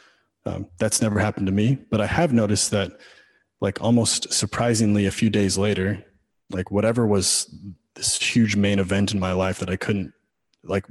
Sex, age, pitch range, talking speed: male, 30-49, 95-110 Hz, 175 wpm